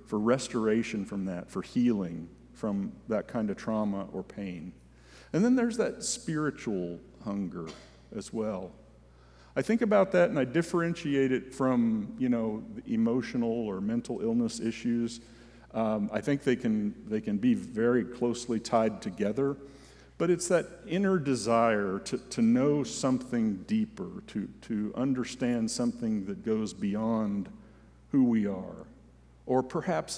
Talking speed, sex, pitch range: 145 wpm, male, 85-145 Hz